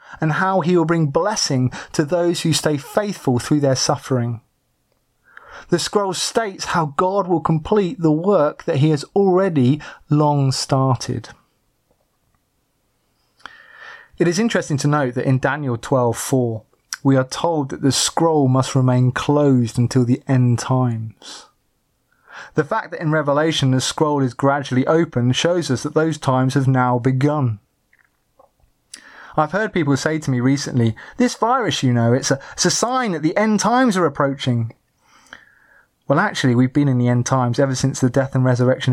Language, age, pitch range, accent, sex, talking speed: English, 30-49, 130-165 Hz, British, male, 160 wpm